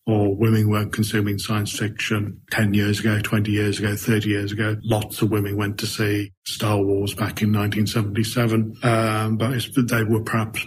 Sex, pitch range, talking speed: male, 110-125 Hz, 175 wpm